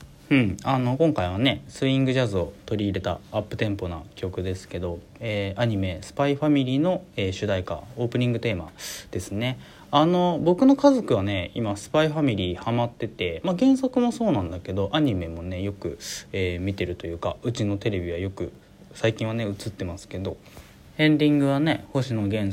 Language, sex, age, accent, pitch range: Japanese, male, 20-39, native, 100-150 Hz